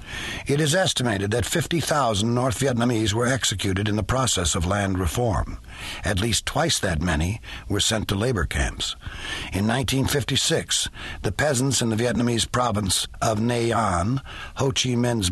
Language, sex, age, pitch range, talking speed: English, male, 60-79, 105-130 Hz, 155 wpm